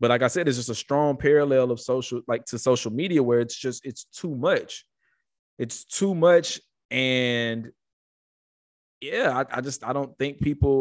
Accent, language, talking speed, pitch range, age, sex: American, English, 185 wpm, 115-140 Hz, 20-39, male